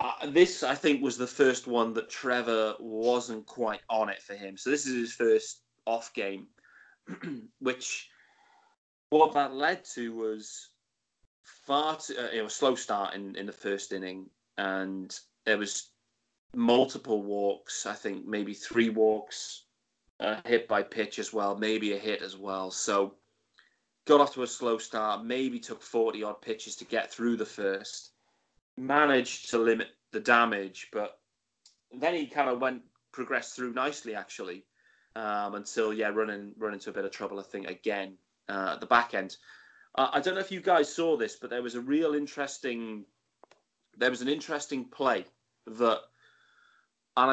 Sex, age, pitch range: male, 30-49, 105-140 Hz